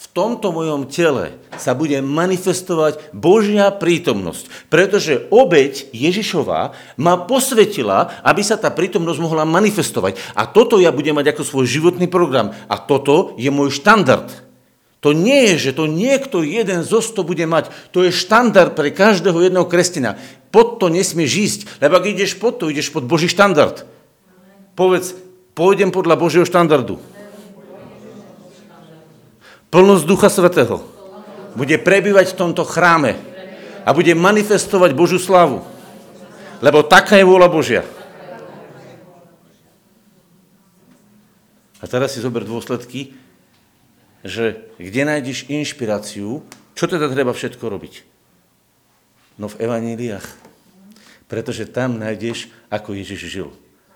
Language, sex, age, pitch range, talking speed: Slovak, male, 50-69, 145-195 Hz, 125 wpm